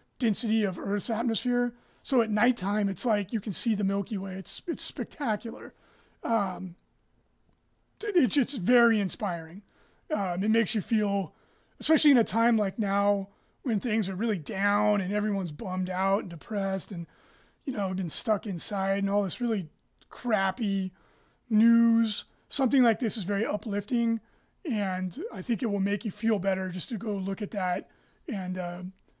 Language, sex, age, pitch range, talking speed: English, male, 30-49, 195-235 Hz, 165 wpm